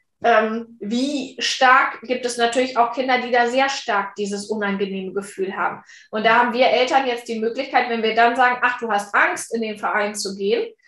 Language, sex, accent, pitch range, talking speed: German, female, German, 225-260 Hz, 200 wpm